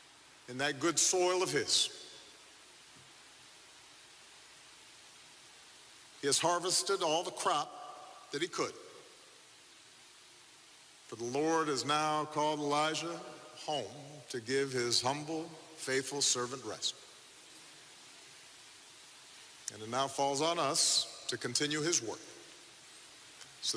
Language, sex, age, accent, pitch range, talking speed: English, male, 50-69, American, 135-180 Hz, 105 wpm